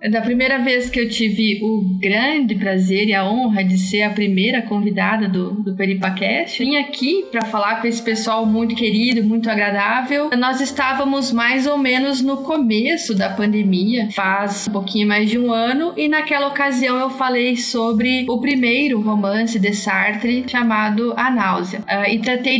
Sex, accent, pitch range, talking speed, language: female, Brazilian, 205-245 Hz, 165 wpm, Portuguese